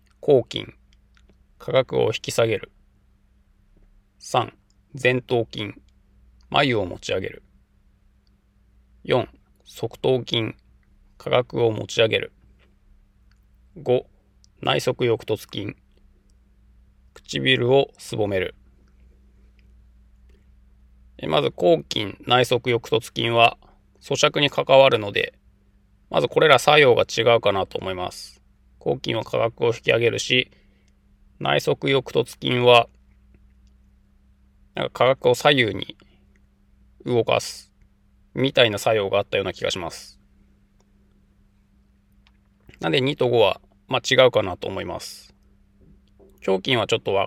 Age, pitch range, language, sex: 20-39, 95-120 Hz, Japanese, male